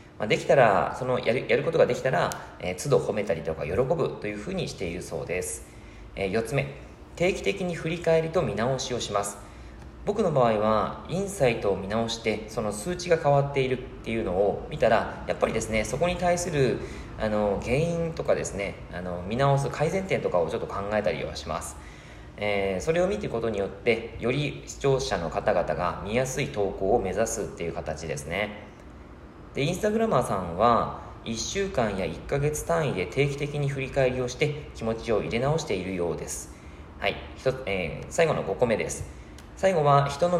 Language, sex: Japanese, male